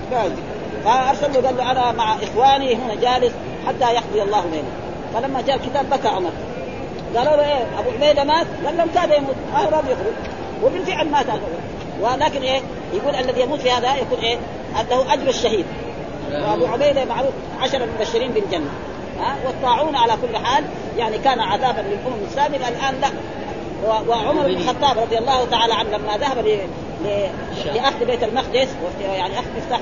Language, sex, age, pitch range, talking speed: Arabic, female, 40-59, 235-290 Hz, 165 wpm